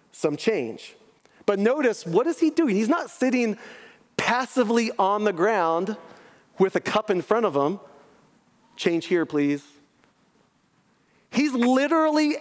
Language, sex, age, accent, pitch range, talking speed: English, male, 30-49, American, 175-240 Hz, 130 wpm